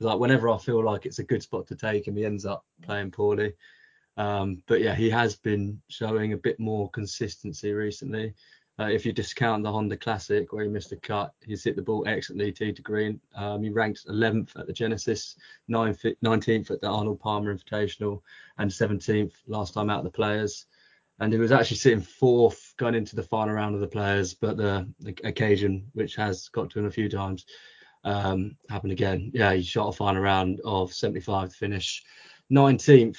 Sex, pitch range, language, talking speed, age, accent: male, 105-115 Hz, English, 200 wpm, 20-39, British